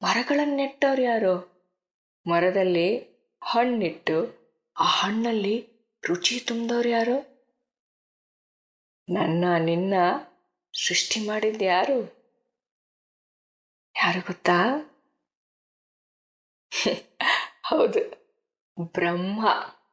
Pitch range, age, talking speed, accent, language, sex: 175-240 Hz, 20-39, 50 wpm, native, Kannada, female